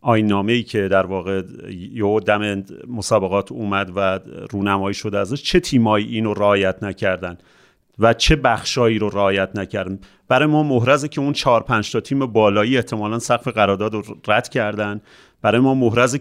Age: 30-49